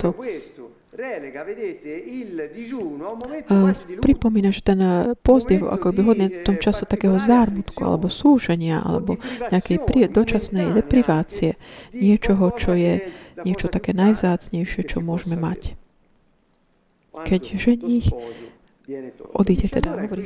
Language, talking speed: Slovak, 110 wpm